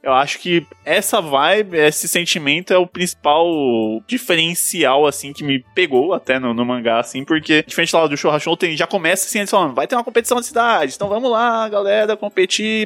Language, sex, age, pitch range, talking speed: Portuguese, male, 20-39, 130-185 Hz, 195 wpm